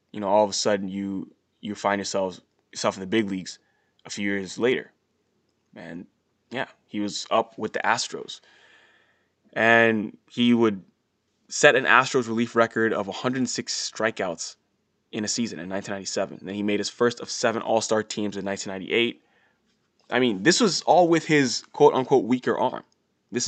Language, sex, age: English, male, 20-39